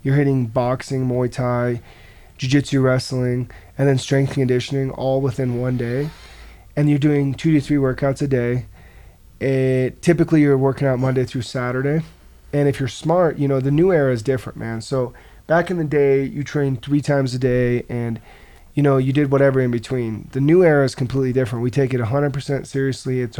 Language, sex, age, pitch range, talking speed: English, male, 30-49, 125-140 Hz, 190 wpm